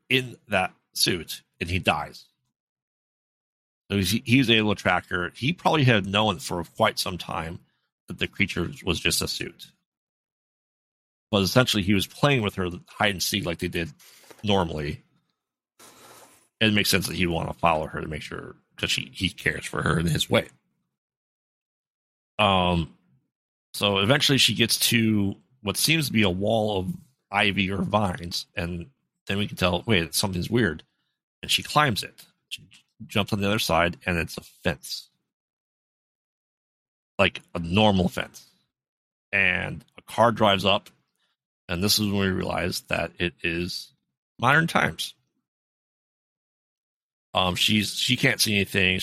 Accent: American